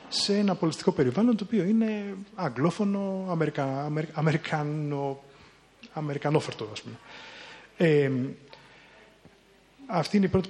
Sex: male